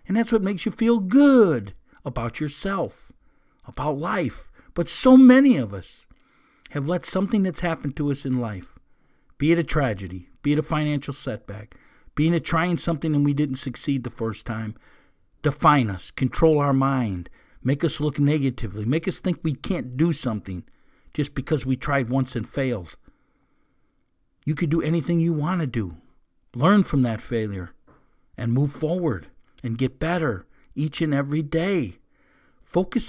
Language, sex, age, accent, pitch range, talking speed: English, male, 50-69, American, 125-165 Hz, 165 wpm